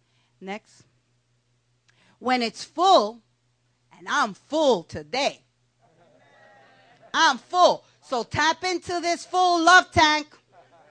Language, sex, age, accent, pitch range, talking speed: English, female, 40-59, American, 225-360 Hz, 95 wpm